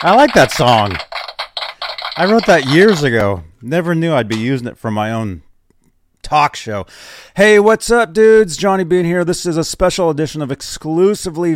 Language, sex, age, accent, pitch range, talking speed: English, male, 40-59, American, 105-165 Hz, 175 wpm